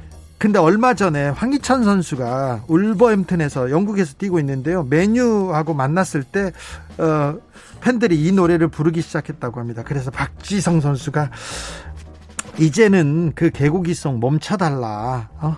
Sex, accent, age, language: male, native, 40-59, Korean